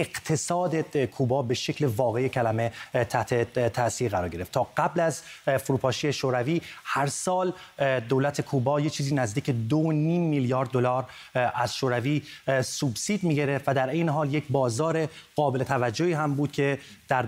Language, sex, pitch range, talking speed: Persian, male, 135-160 Hz, 140 wpm